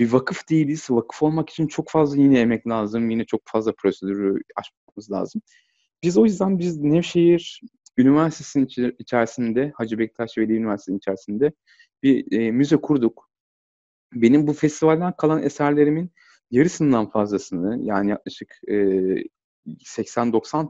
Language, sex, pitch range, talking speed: Turkish, male, 110-155 Hz, 120 wpm